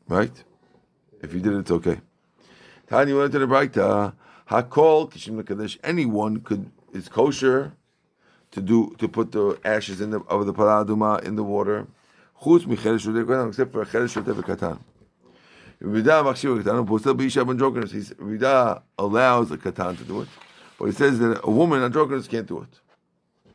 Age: 50-69